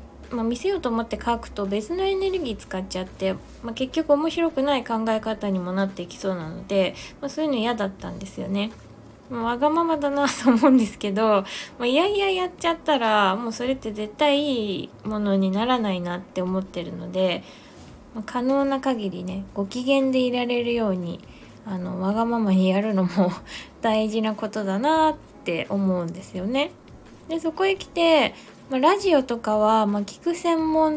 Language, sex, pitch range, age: Japanese, female, 195-285 Hz, 20-39